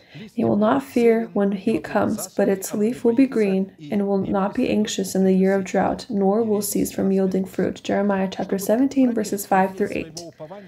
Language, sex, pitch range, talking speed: English, female, 195-230 Hz, 200 wpm